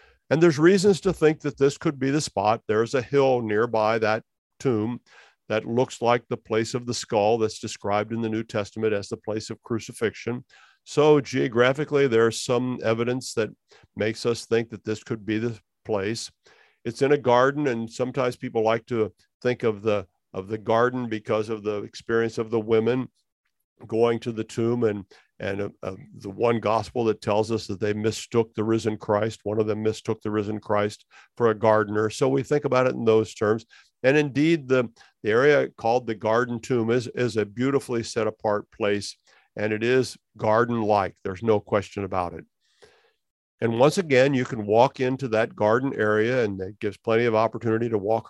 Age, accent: 50-69, American